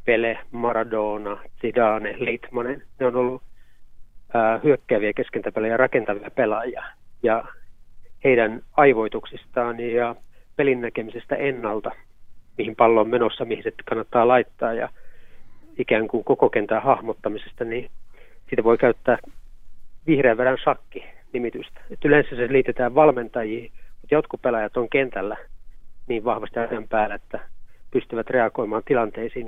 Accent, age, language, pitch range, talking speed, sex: native, 30-49, Finnish, 110-135 Hz, 120 wpm, male